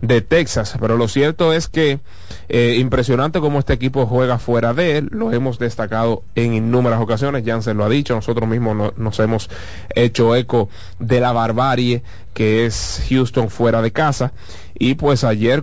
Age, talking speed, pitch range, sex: 30-49, 175 wpm, 110-130 Hz, male